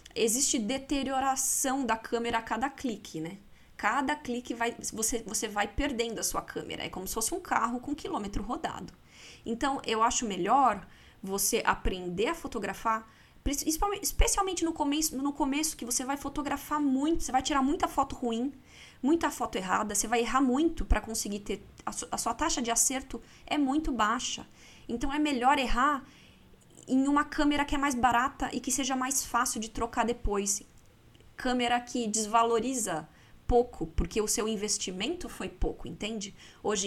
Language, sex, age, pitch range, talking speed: Portuguese, female, 20-39, 225-285 Hz, 170 wpm